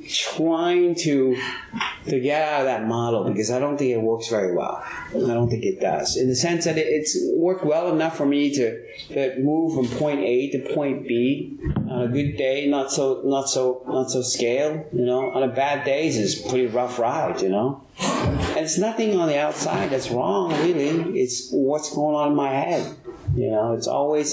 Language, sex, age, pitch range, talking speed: English, male, 30-49, 125-160 Hz, 210 wpm